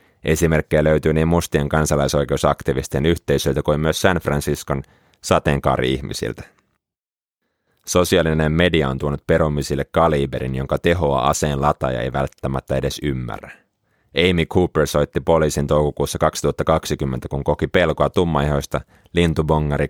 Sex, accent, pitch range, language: male, native, 70-80 Hz, Finnish